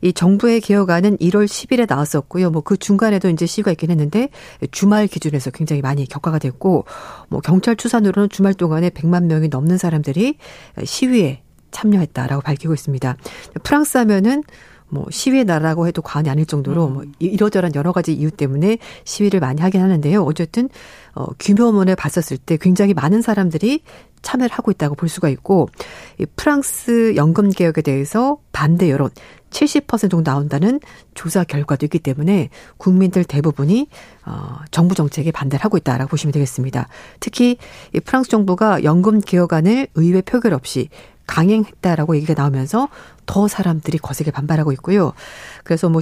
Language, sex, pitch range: Korean, female, 155-210 Hz